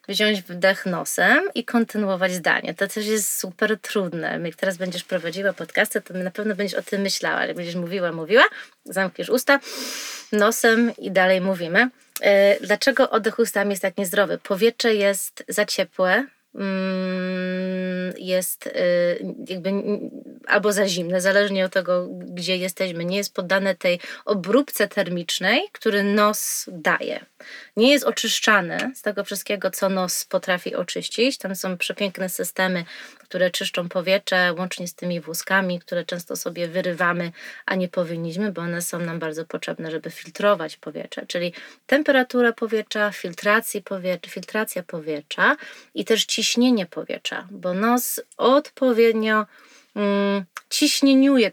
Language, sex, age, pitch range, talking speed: Polish, female, 20-39, 180-215 Hz, 130 wpm